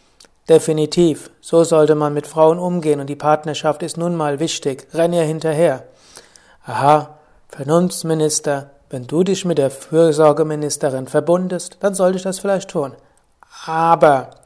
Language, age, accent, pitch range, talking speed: German, 60-79, German, 150-185 Hz, 135 wpm